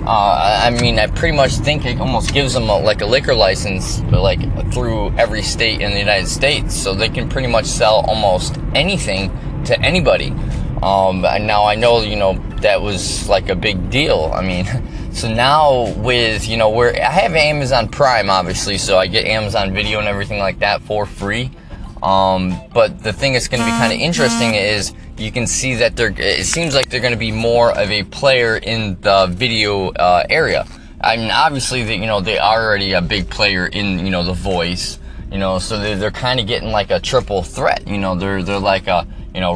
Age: 20-39